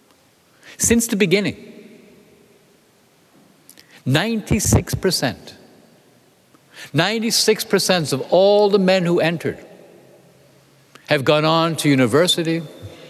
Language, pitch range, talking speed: English, 130-175 Hz, 75 wpm